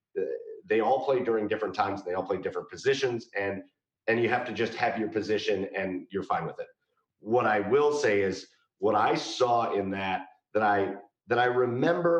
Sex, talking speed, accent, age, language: male, 200 wpm, American, 40-59, English